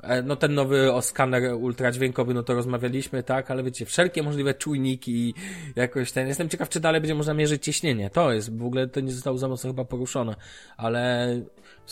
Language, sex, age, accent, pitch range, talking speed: Polish, male, 20-39, native, 120-140 Hz, 190 wpm